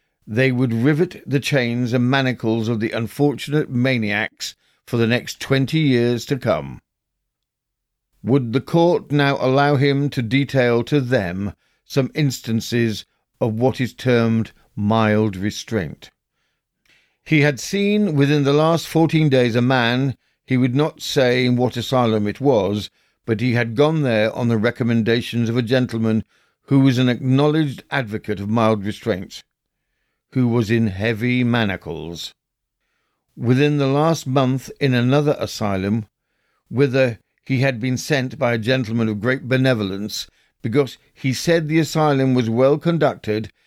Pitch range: 115-140 Hz